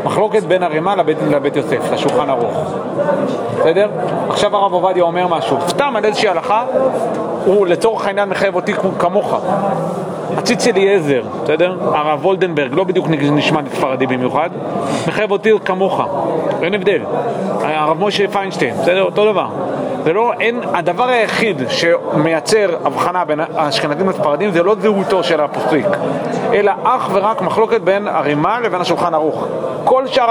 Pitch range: 170-225 Hz